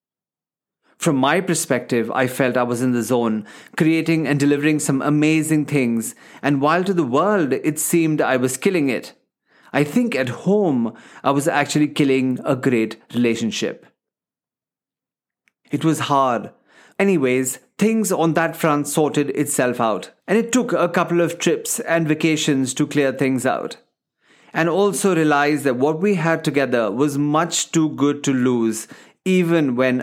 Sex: male